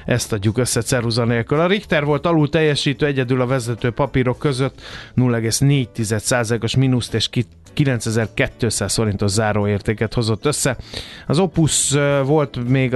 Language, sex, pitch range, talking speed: Hungarian, male, 115-140 Hz, 120 wpm